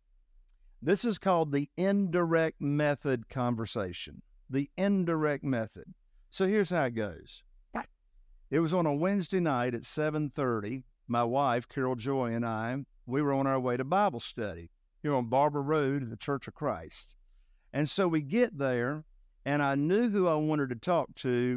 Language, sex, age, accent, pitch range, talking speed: English, male, 50-69, American, 120-160 Hz, 170 wpm